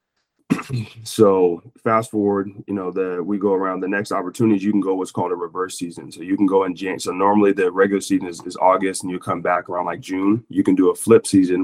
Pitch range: 95-115 Hz